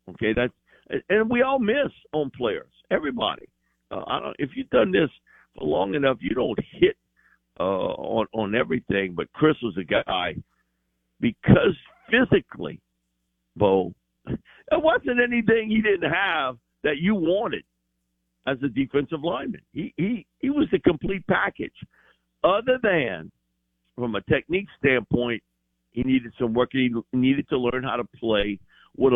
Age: 60-79